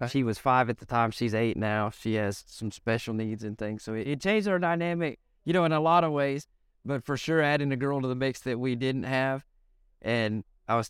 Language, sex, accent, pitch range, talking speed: English, male, American, 110-135 Hz, 250 wpm